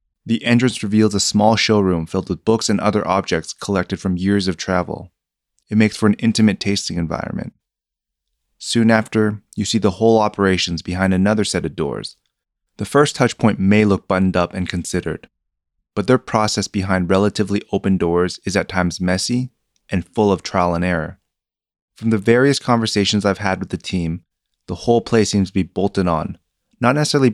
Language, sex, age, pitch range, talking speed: English, male, 30-49, 90-110 Hz, 180 wpm